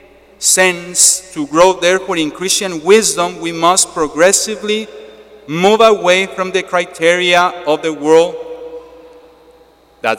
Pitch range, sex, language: 145-200 Hz, male, English